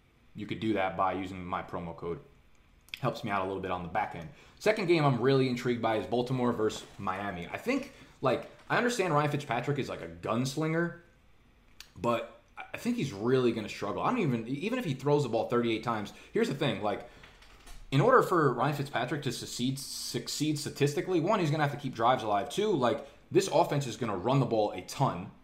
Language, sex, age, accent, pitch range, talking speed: English, male, 20-39, American, 110-145 Hz, 210 wpm